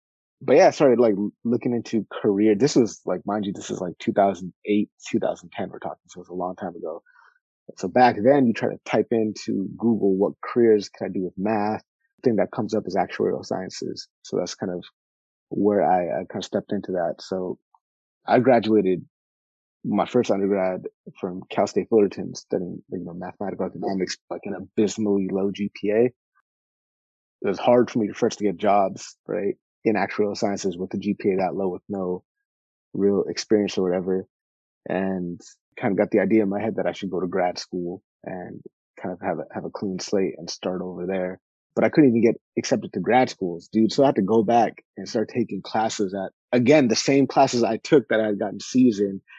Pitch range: 95-120 Hz